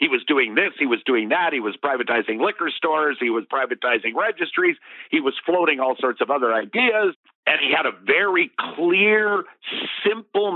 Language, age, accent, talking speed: English, 50-69, American, 180 wpm